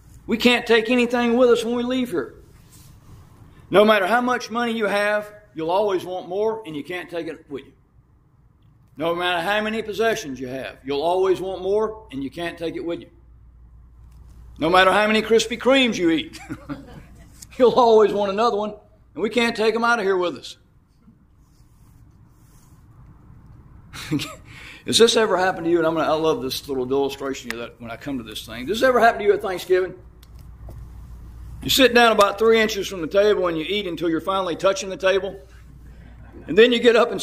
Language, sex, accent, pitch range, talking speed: English, male, American, 165-230 Hz, 200 wpm